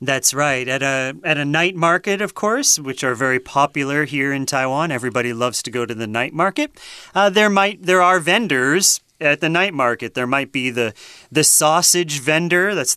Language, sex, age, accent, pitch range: Chinese, male, 30-49, American, 130-195 Hz